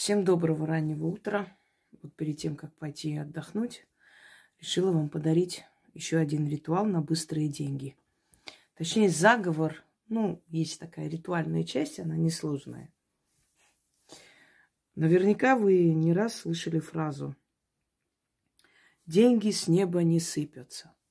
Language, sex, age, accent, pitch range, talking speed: Russian, female, 20-39, native, 160-195 Hz, 115 wpm